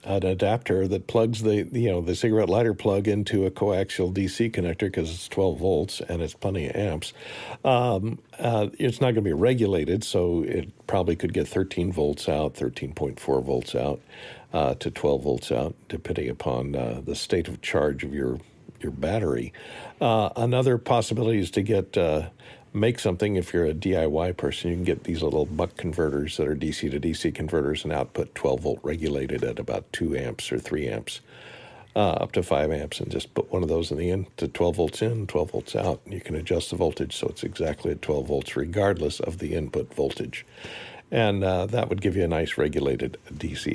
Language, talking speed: English, 205 wpm